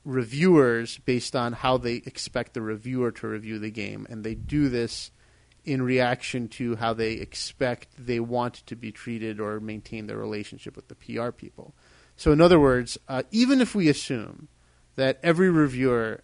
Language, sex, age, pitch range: English, male, 30-49, 110-135 Hz